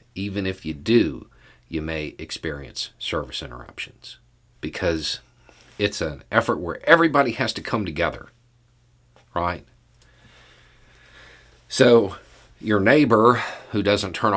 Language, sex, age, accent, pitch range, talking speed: English, male, 40-59, American, 70-115 Hz, 110 wpm